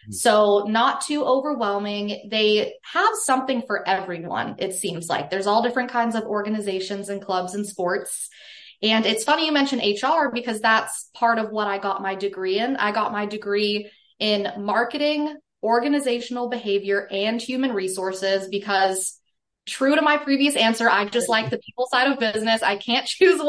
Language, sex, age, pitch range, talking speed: English, female, 20-39, 200-250 Hz, 170 wpm